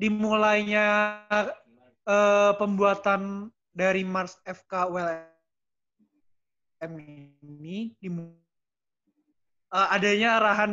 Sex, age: male, 20-39